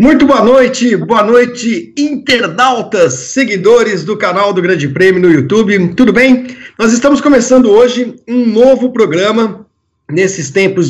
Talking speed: 140 wpm